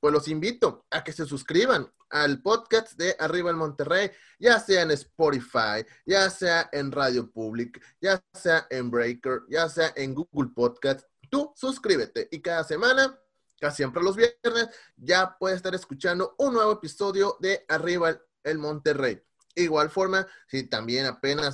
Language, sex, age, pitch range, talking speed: Spanish, male, 30-49, 145-200 Hz, 160 wpm